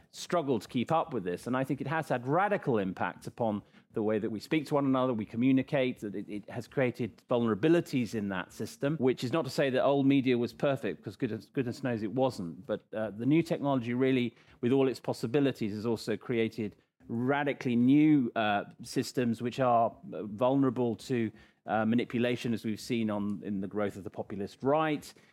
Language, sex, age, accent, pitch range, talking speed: English, male, 40-59, British, 110-140 Hz, 195 wpm